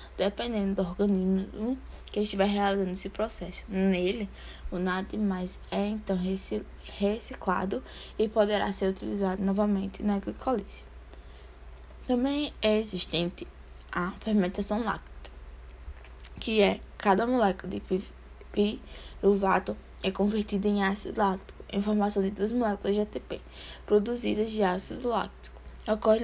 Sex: female